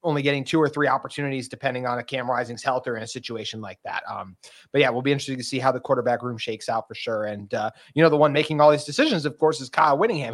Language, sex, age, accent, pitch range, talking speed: English, male, 30-49, American, 125-155 Hz, 285 wpm